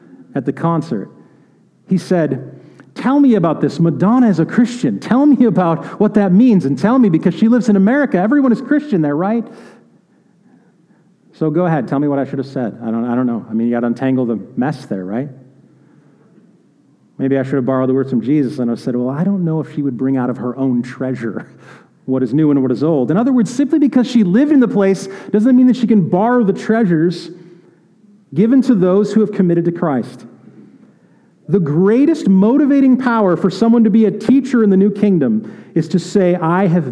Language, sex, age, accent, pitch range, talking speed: English, male, 40-59, American, 140-210 Hz, 220 wpm